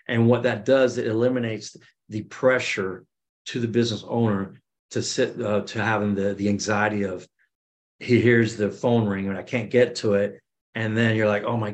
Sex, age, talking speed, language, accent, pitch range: male, 40-59, 195 wpm, English, American, 100-120 Hz